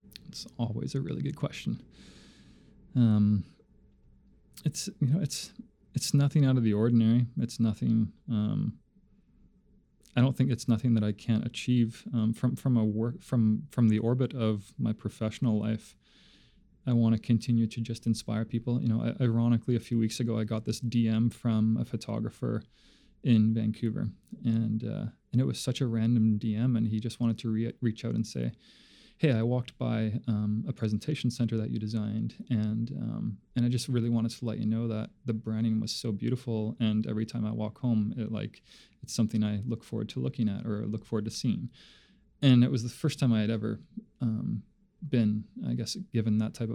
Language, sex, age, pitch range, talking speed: English, male, 20-39, 110-120 Hz, 195 wpm